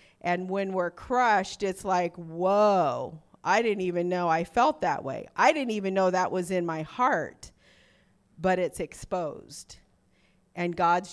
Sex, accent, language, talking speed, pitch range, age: female, American, English, 155 wpm, 175-225 Hz, 40-59